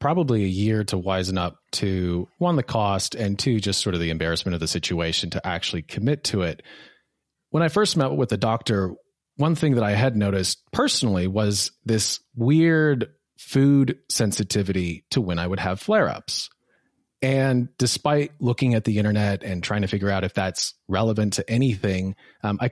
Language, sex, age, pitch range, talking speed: English, male, 30-49, 100-135 Hz, 180 wpm